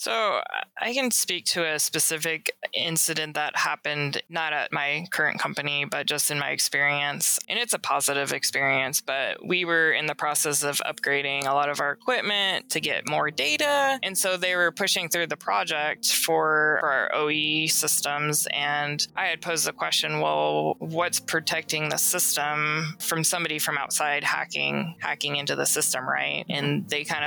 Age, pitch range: 20-39, 145-160 Hz